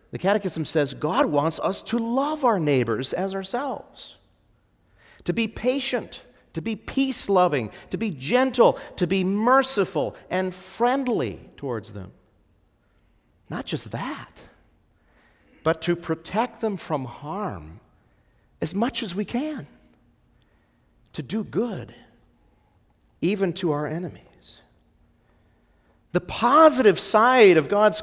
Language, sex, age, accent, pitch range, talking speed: English, male, 50-69, American, 155-240 Hz, 115 wpm